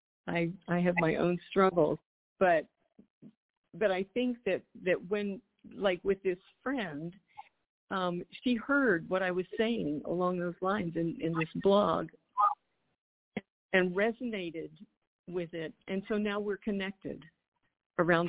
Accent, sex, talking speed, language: American, female, 135 wpm, English